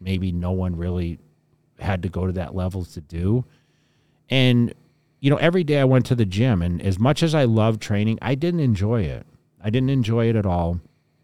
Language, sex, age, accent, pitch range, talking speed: English, male, 40-59, American, 95-115 Hz, 210 wpm